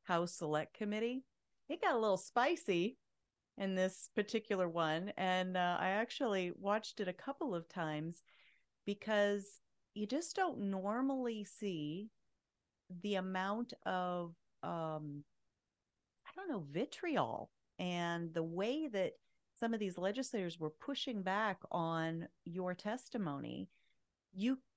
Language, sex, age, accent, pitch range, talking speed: English, female, 40-59, American, 180-245 Hz, 125 wpm